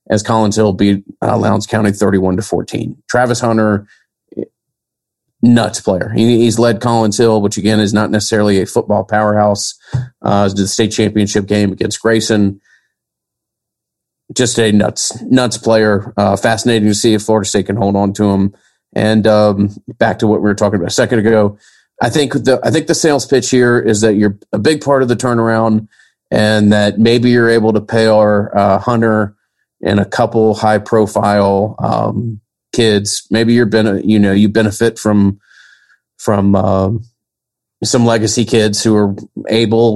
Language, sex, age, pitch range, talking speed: English, male, 30-49, 100-115 Hz, 170 wpm